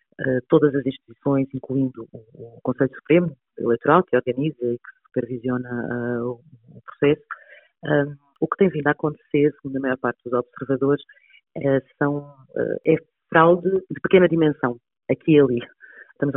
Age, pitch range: 30-49, 130-150 Hz